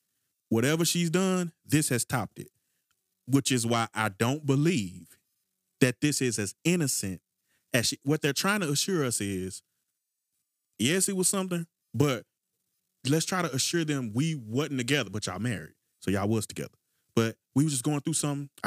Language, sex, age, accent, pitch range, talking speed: English, male, 30-49, American, 120-170 Hz, 165 wpm